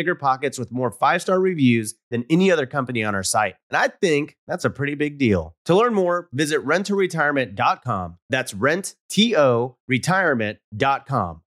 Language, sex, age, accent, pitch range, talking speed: English, male, 30-49, American, 125-180 Hz, 160 wpm